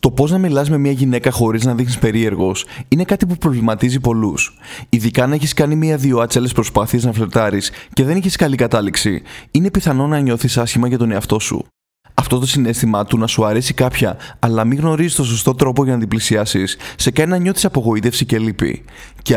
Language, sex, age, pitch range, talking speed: Greek, male, 20-39, 115-145 Hz, 210 wpm